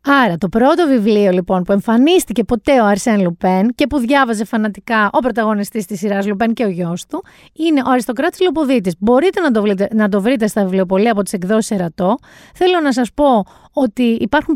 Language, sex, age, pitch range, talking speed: Greek, female, 30-49, 205-310 Hz, 195 wpm